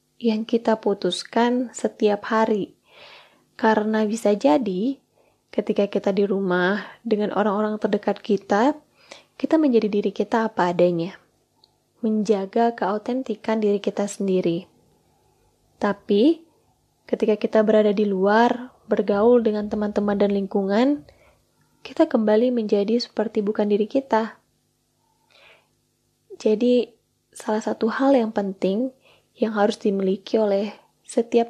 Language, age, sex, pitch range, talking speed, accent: Indonesian, 20-39, female, 205-235 Hz, 105 wpm, native